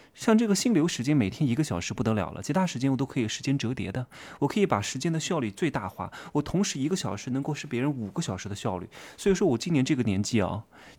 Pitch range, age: 120-190 Hz, 20-39